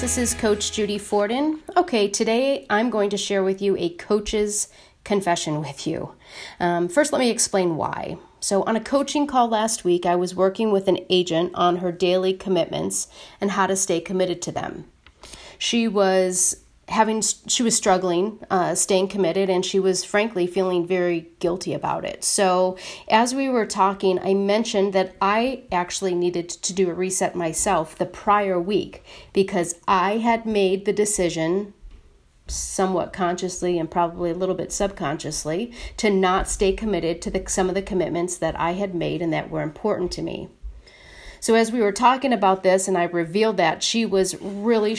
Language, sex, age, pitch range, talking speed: English, female, 30-49, 175-210 Hz, 175 wpm